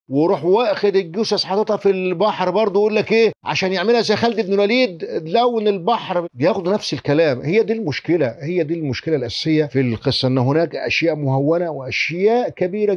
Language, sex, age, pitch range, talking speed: Arabic, male, 50-69, 140-210 Hz, 160 wpm